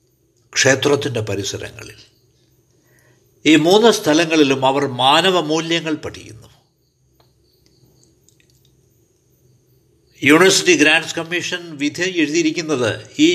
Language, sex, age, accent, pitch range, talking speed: Malayalam, male, 60-79, native, 115-155 Hz, 65 wpm